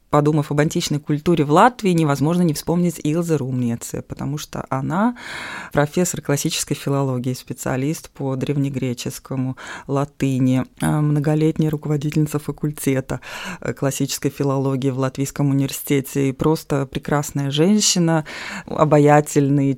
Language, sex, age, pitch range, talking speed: Russian, female, 20-39, 140-170 Hz, 100 wpm